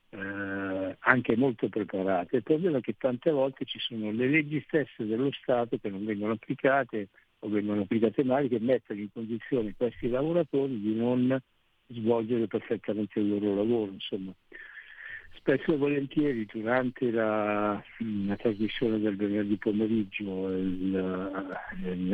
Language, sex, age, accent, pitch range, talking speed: Italian, male, 60-79, native, 105-135 Hz, 140 wpm